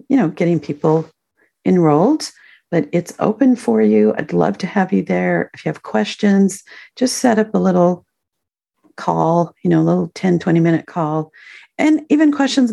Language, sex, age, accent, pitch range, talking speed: English, female, 50-69, American, 165-245 Hz, 170 wpm